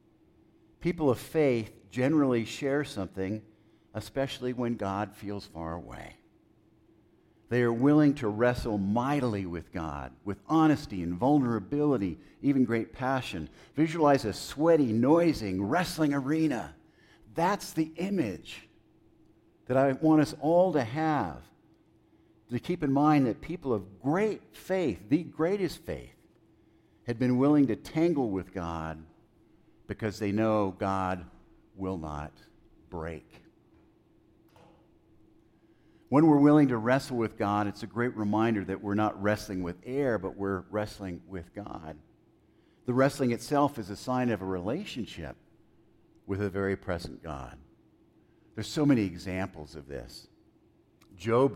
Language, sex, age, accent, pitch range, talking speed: English, male, 50-69, American, 100-140 Hz, 130 wpm